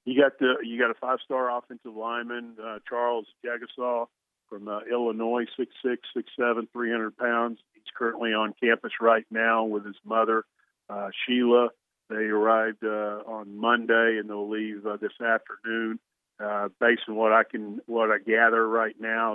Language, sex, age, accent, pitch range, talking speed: English, male, 50-69, American, 110-120 Hz, 165 wpm